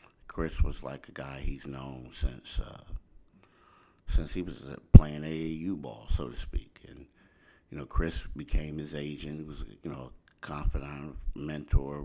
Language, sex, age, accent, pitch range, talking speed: English, male, 50-69, American, 75-80 Hz, 160 wpm